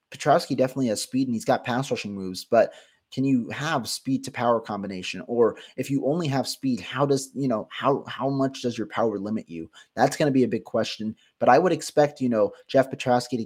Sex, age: male, 30-49